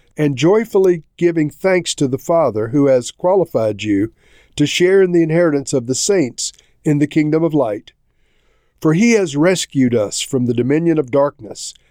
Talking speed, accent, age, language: 170 wpm, American, 50-69, English